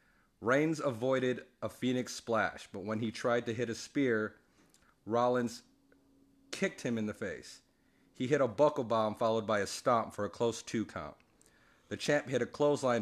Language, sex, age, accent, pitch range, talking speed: English, male, 40-59, American, 105-125 Hz, 175 wpm